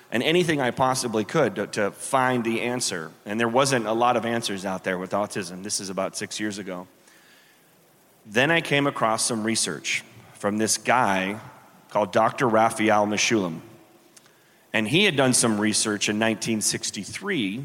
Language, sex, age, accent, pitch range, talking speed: English, male, 30-49, American, 105-125 Hz, 165 wpm